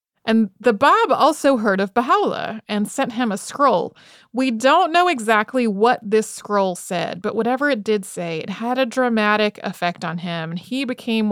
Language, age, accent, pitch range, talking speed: English, 30-49, American, 195-240 Hz, 185 wpm